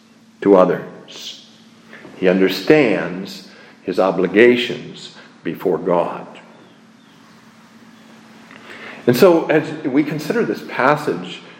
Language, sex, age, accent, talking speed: English, male, 50-69, American, 80 wpm